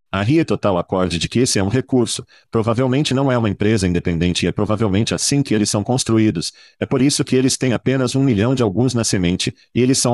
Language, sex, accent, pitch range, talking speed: Portuguese, male, Brazilian, 100-130 Hz, 235 wpm